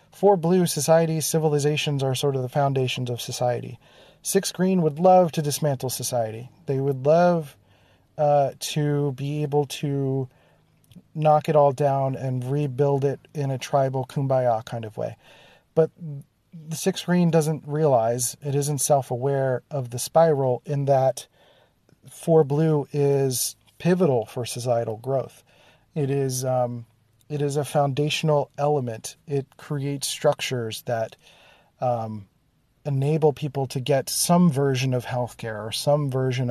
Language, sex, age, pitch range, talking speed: English, male, 40-59, 125-150 Hz, 140 wpm